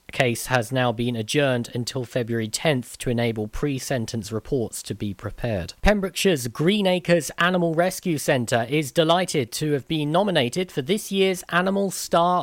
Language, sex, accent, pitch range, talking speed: English, male, British, 130-170 Hz, 160 wpm